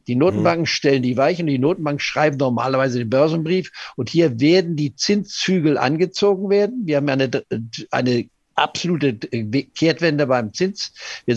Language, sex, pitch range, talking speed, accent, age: German, male, 125-160 Hz, 150 wpm, German, 50-69